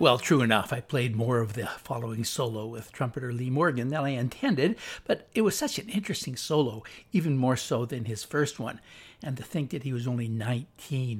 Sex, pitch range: male, 115-140 Hz